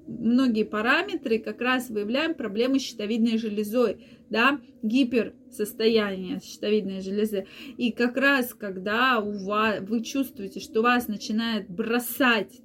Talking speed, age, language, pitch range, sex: 125 wpm, 20-39, Russian, 215-255 Hz, female